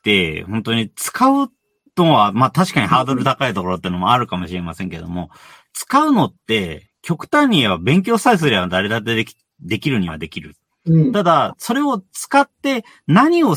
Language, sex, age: Japanese, male, 40-59